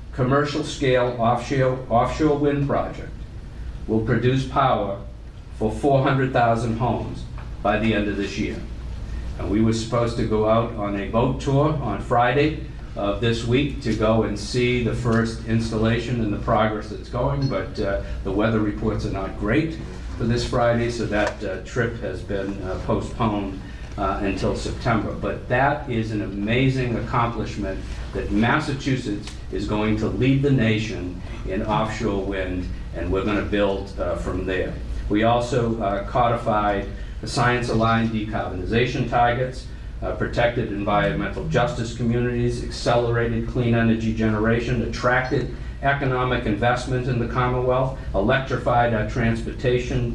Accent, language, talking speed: American, English, 140 wpm